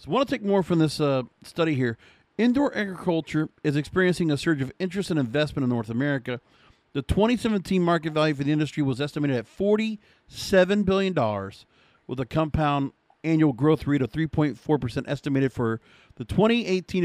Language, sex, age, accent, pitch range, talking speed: English, male, 50-69, American, 140-180 Hz, 175 wpm